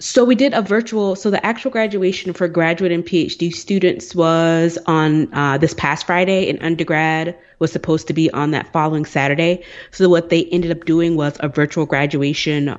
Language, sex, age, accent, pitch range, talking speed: English, female, 20-39, American, 135-160 Hz, 190 wpm